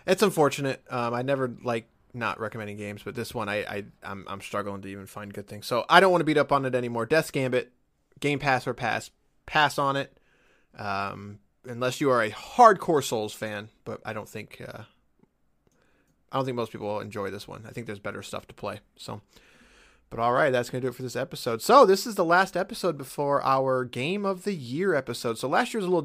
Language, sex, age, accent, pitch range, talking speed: English, male, 20-39, American, 110-155 Hz, 235 wpm